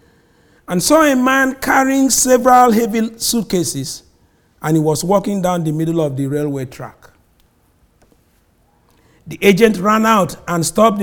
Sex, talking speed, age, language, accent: male, 135 wpm, 50-69, English, Nigerian